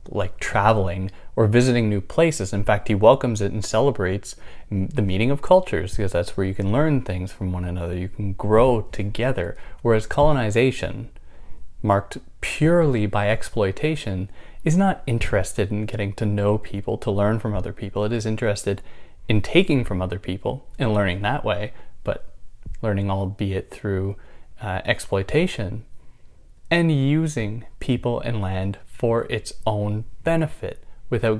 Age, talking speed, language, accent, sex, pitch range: 20-39, 150 wpm, English, American, male, 100-130 Hz